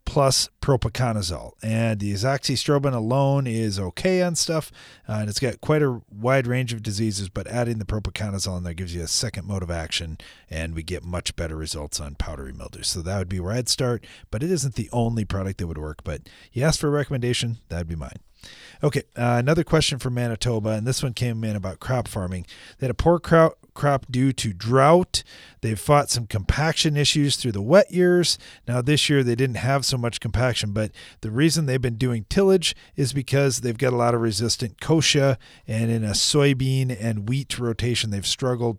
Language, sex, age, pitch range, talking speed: English, male, 30-49, 105-140 Hz, 205 wpm